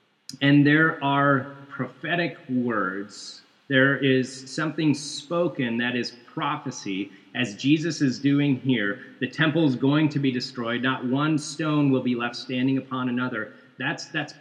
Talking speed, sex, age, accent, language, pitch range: 145 wpm, male, 30-49, American, English, 125-150 Hz